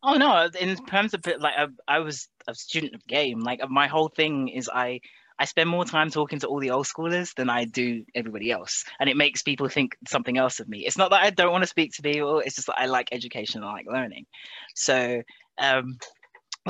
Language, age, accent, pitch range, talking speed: English, 20-39, British, 125-155 Hz, 235 wpm